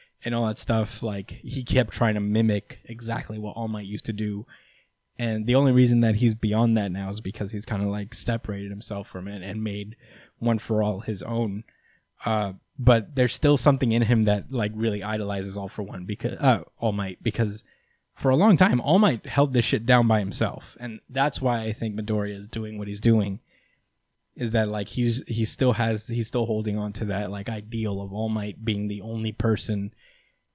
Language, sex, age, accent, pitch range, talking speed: English, male, 20-39, American, 105-115 Hz, 205 wpm